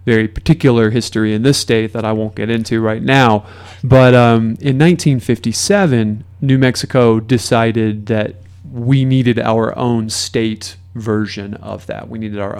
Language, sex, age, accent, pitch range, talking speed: English, male, 30-49, American, 100-125 Hz, 155 wpm